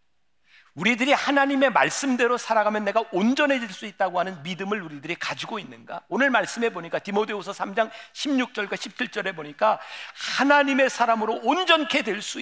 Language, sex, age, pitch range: Korean, male, 50-69, 190-250 Hz